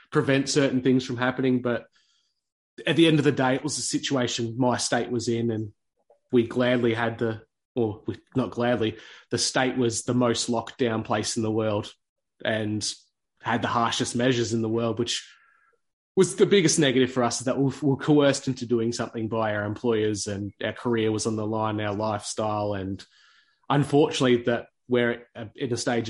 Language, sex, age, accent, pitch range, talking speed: English, male, 20-39, Australian, 115-130 Hz, 185 wpm